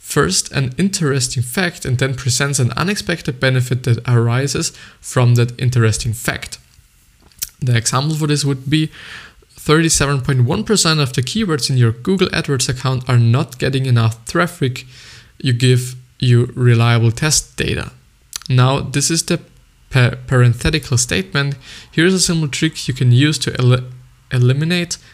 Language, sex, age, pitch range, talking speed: English, male, 20-39, 120-155 Hz, 135 wpm